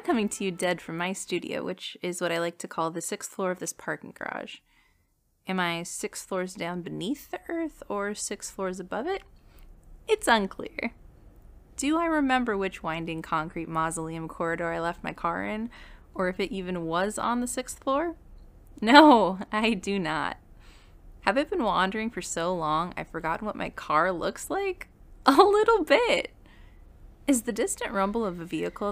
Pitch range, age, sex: 165-240 Hz, 20-39, female